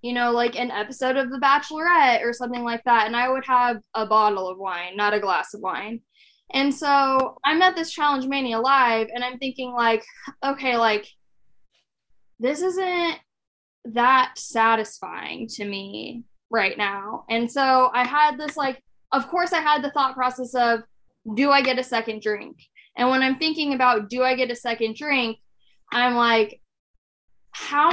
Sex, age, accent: female, 10-29, American